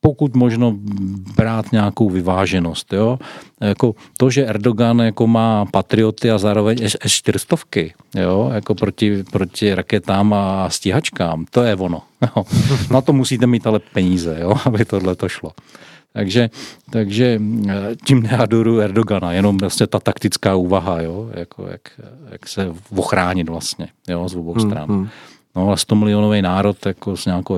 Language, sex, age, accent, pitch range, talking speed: Czech, male, 40-59, native, 95-120 Hz, 150 wpm